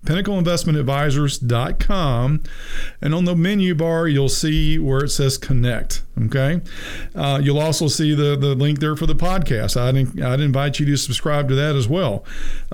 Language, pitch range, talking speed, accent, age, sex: English, 125-155 Hz, 165 wpm, American, 50-69, male